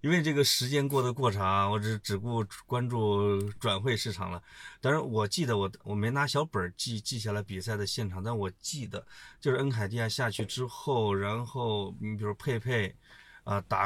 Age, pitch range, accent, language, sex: 20-39, 105-140 Hz, native, Chinese, male